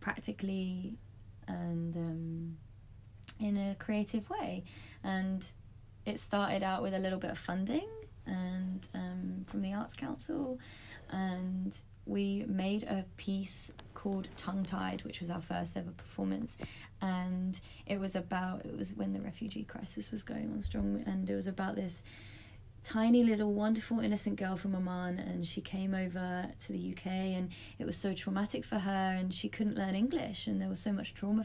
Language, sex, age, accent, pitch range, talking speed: English, female, 20-39, British, 165-210 Hz, 170 wpm